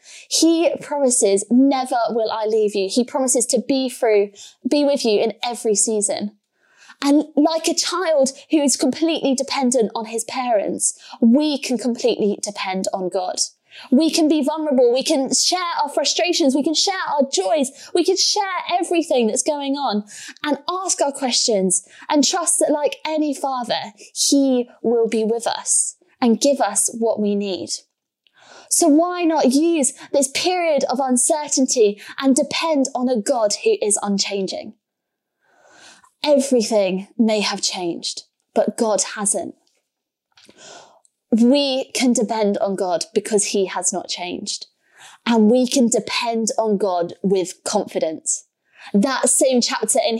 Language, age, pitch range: English, 20-39, 220-305 Hz